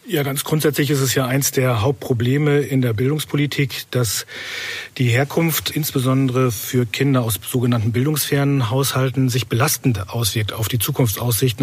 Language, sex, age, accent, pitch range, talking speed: German, male, 40-59, German, 125-145 Hz, 145 wpm